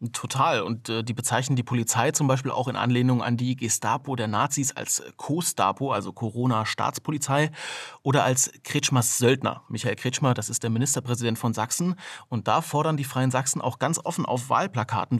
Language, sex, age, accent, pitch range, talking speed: German, male, 30-49, German, 115-140 Hz, 170 wpm